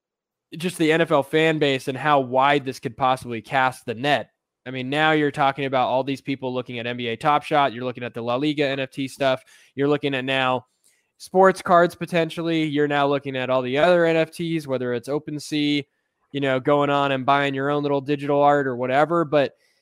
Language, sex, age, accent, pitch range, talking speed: English, male, 10-29, American, 135-170 Hz, 205 wpm